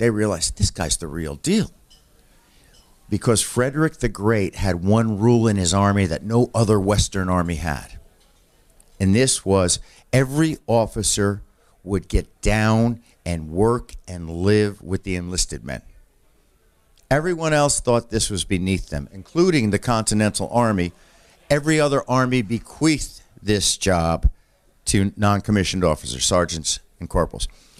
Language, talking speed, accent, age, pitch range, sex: English, 135 wpm, American, 50-69, 90-130 Hz, male